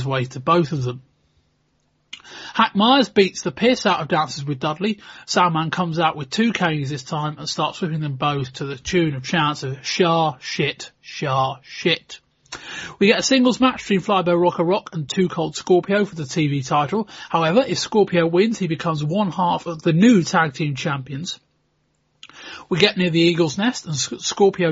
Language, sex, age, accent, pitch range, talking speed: English, male, 30-49, British, 150-185 Hz, 185 wpm